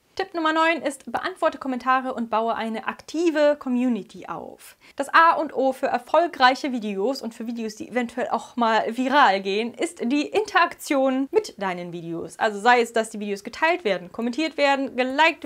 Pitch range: 215-280 Hz